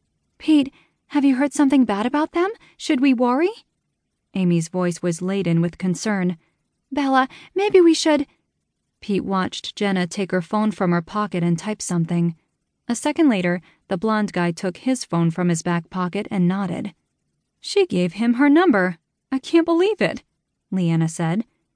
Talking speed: 165 wpm